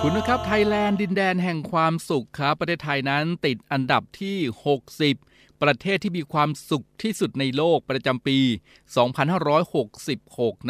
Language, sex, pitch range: Thai, male, 120-145 Hz